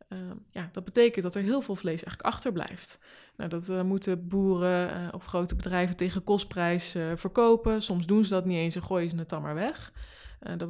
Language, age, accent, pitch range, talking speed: Dutch, 20-39, Dutch, 170-205 Hz, 215 wpm